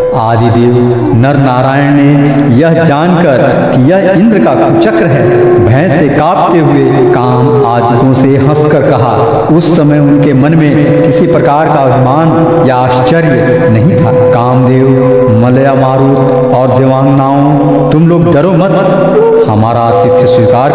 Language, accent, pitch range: Hindi, native, 125-160 Hz